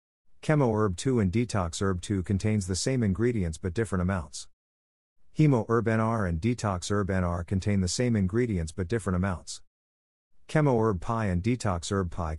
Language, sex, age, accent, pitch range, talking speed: English, male, 50-69, American, 90-115 Hz, 170 wpm